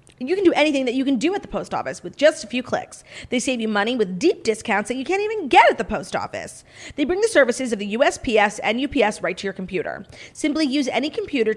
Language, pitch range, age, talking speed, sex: English, 205-305 Hz, 30-49, 260 wpm, female